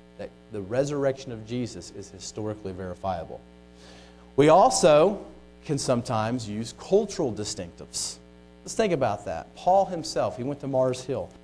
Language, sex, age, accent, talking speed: English, male, 40-59, American, 130 wpm